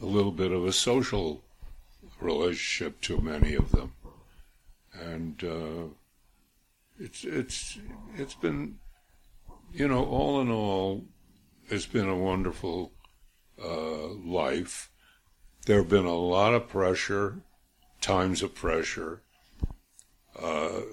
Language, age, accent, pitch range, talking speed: English, 60-79, American, 80-100 Hz, 110 wpm